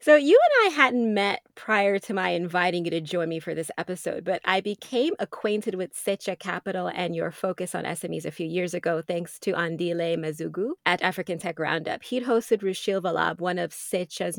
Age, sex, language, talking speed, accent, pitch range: 20-39, female, English, 200 wpm, American, 170-200 Hz